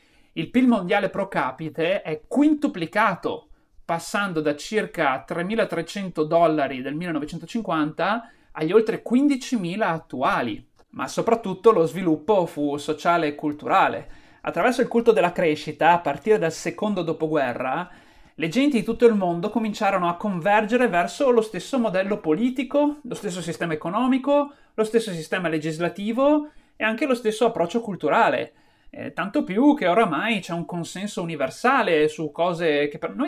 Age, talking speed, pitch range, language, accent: 30-49, 135 wpm, 165-235 Hz, Italian, native